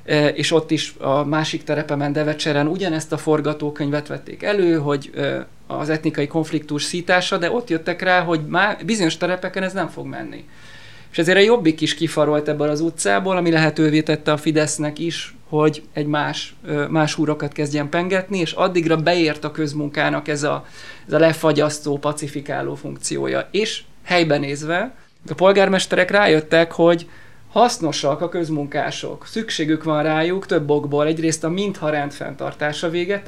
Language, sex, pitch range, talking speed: Hungarian, male, 150-170 Hz, 150 wpm